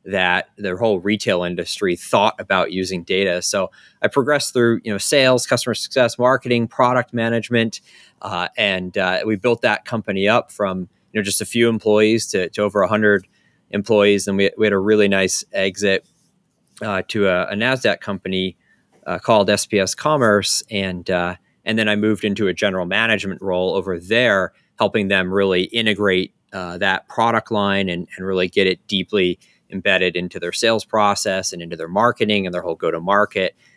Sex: male